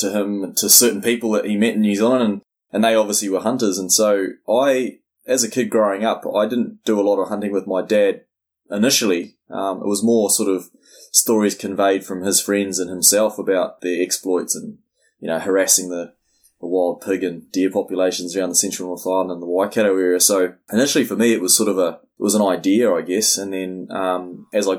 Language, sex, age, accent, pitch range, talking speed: English, male, 20-39, Australian, 90-105 Hz, 225 wpm